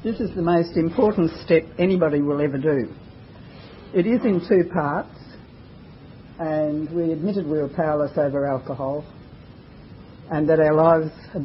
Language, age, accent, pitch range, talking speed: English, 60-79, Australian, 140-175 Hz, 145 wpm